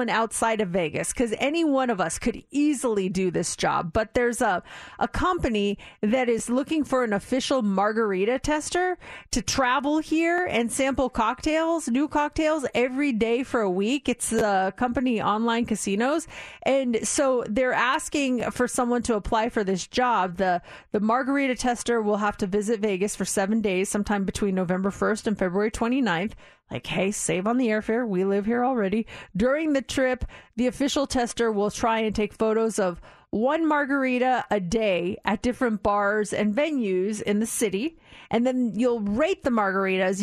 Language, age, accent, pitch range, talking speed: English, 30-49, American, 210-280 Hz, 170 wpm